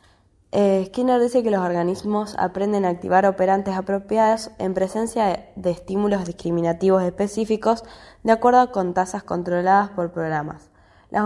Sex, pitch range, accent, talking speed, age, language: female, 175-220 Hz, Argentinian, 140 wpm, 10-29, Spanish